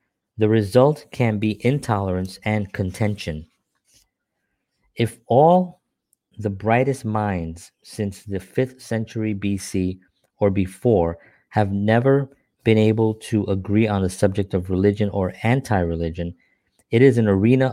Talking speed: 120 wpm